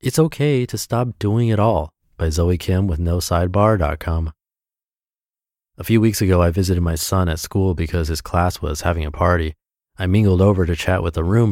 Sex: male